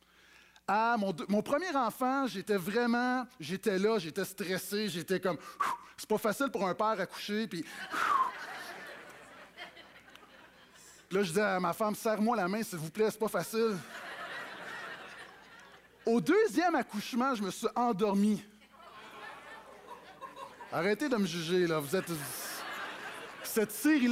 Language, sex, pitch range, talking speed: French, male, 205-270 Hz, 130 wpm